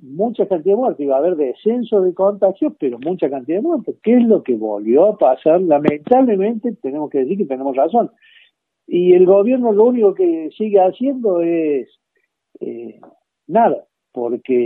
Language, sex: Spanish, male